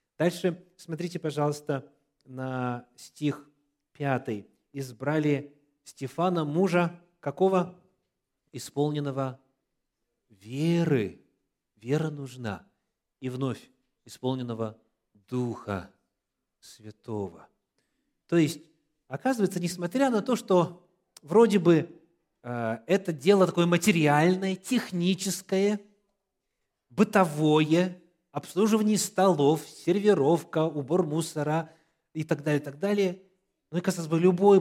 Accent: native